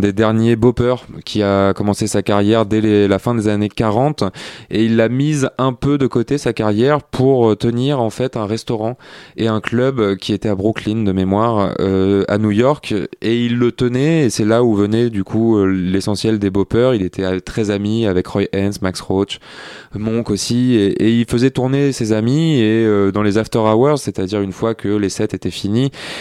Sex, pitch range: male, 100-125 Hz